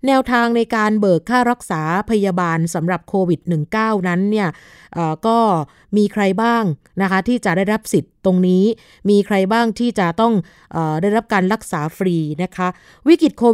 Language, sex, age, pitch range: Thai, female, 20-39, 180-230 Hz